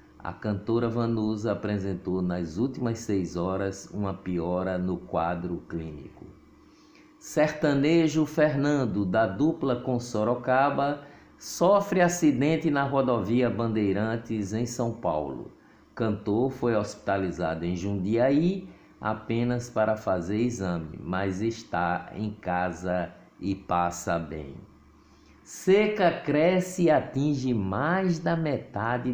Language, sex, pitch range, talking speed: Portuguese, male, 95-145 Hz, 105 wpm